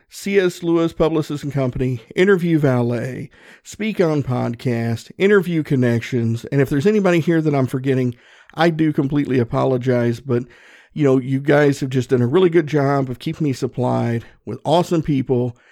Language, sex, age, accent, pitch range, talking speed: English, male, 50-69, American, 125-155 Hz, 165 wpm